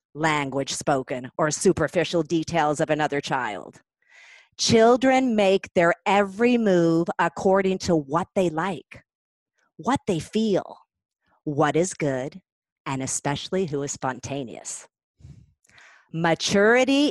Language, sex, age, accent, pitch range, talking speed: English, female, 40-59, American, 155-225 Hz, 105 wpm